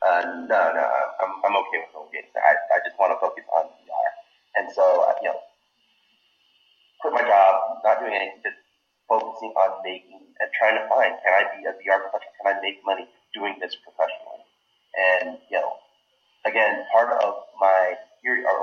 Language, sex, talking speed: English, male, 185 wpm